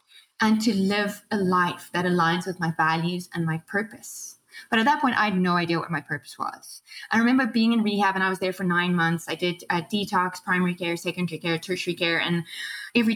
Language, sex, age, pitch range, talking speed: English, female, 20-39, 180-225 Hz, 225 wpm